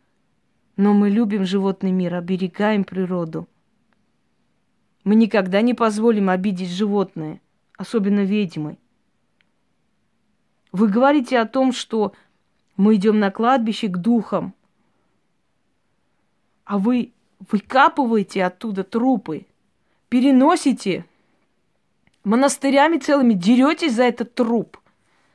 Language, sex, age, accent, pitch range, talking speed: Russian, female, 20-39, native, 200-250 Hz, 90 wpm